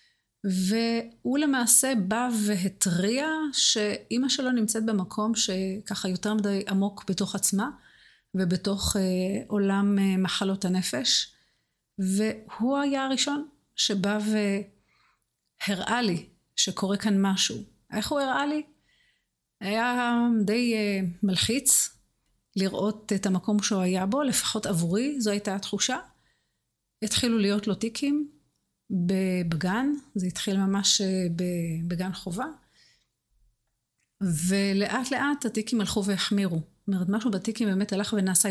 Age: 30-49